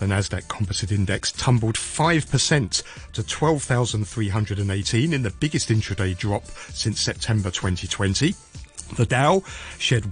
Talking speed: 105 wpm